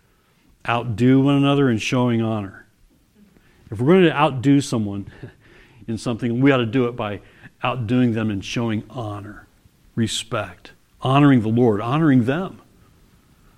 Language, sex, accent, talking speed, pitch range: English, male, American, 135 wpm, 120-185 Hz